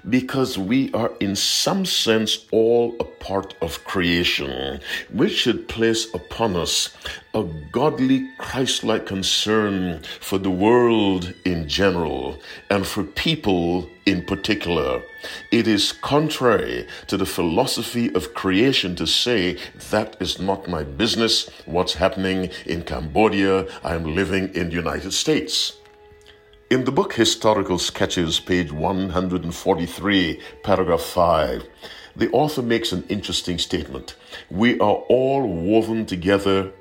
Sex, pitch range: male, 90-115 Hz